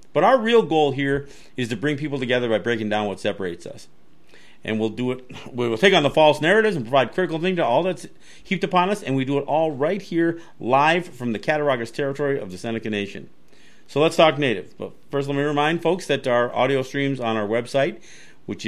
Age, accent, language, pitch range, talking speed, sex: 50-69, American, English, 110-155 Hz, 225 wpm, male